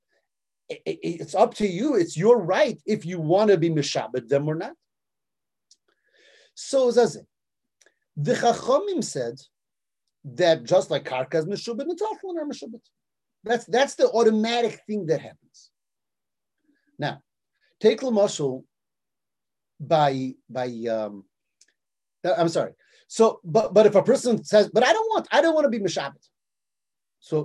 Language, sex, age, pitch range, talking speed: English, male, 30-49, 160-235 Hz, 135 wpm